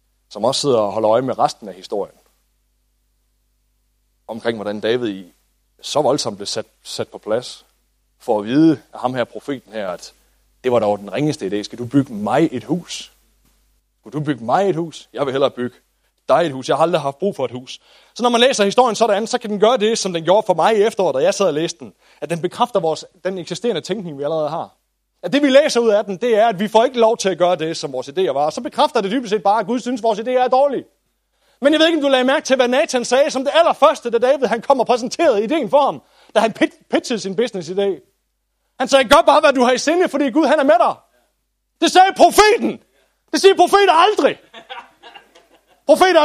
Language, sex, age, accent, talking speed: English, male, 30-49, Danish, 240 wpm